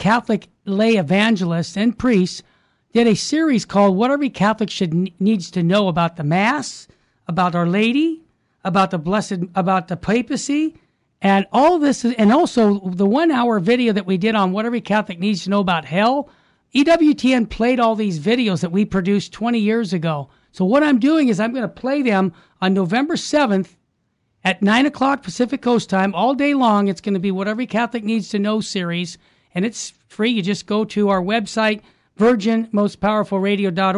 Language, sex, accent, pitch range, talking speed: English, male, American, 190-230 Hz, 180 wpm